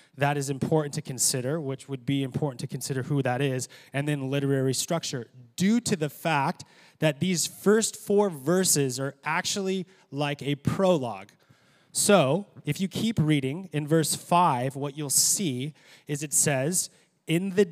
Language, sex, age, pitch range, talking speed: English, male, 20-39, 140-170 Hz, 165 wpm